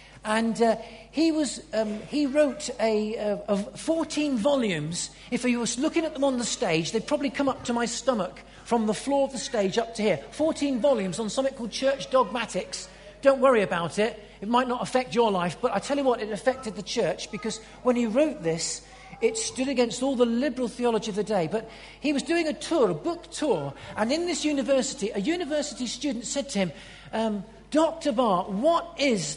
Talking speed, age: 210 wpm, 40-59